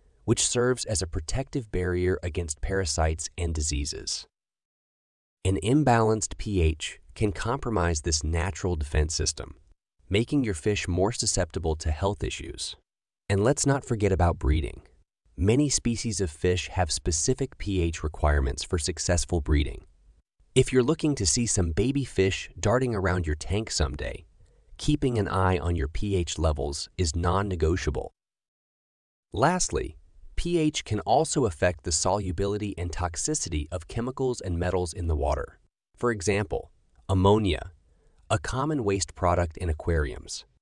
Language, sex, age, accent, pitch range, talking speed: English, male, 30-49, American, 80-105 Hz, 135 wpm